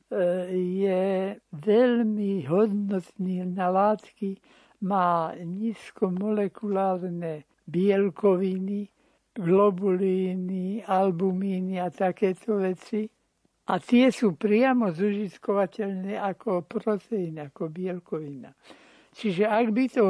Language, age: Slovak, 60-79